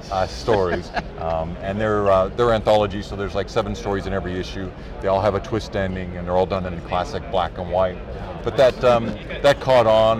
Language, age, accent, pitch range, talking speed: English, 40-59, American, 90-105 Hz, 225 wpm